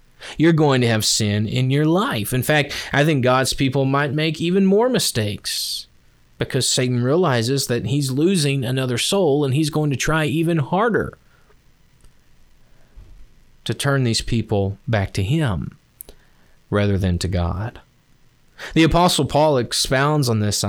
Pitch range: 110-145 Hz